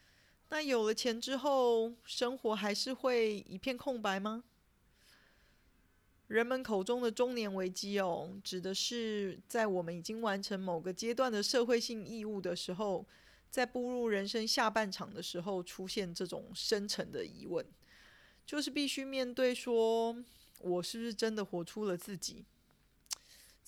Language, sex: Chinese, female